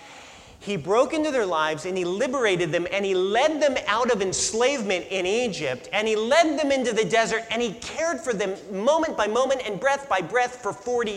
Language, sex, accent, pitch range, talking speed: English, male, American, 185-250 Hz, 210 wpm